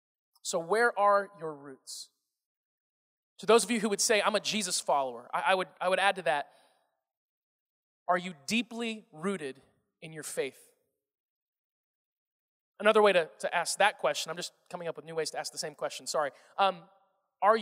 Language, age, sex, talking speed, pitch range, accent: English, 20-39, male, 180 wpm, 190-245 Hz, American